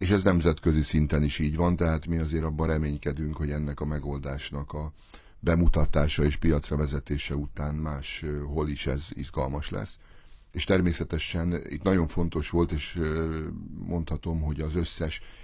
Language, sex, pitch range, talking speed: Hungarian, male, 75-85 Hz, 150 wpm